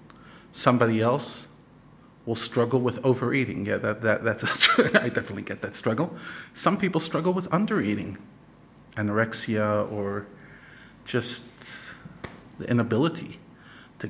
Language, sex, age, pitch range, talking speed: English, male, 50-69, 105-130 Hz, 115 wpm